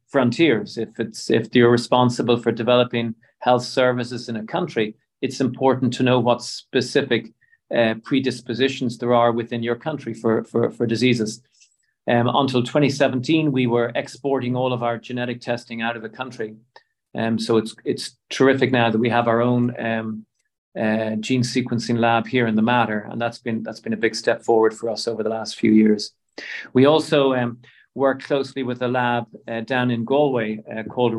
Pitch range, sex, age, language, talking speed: 115-130 Hz, male, 40-59, English, 185 wpm